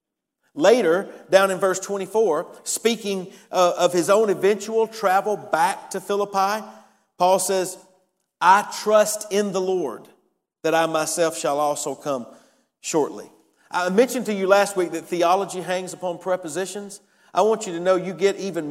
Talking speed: 155 wpm